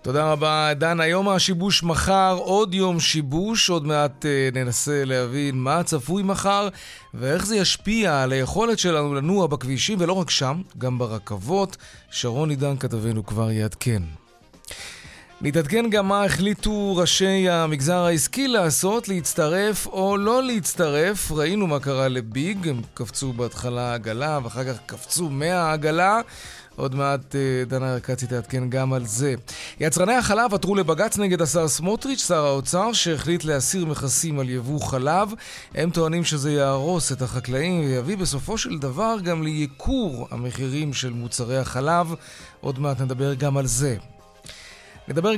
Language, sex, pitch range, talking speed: Hebrew, male, 130-180 Hz, 140 wpm